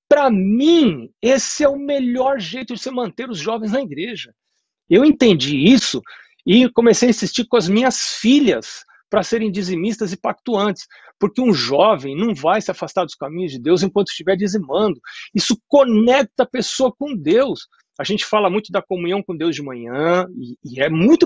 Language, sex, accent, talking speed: Portuguese, male, Brazilian, 180 wpm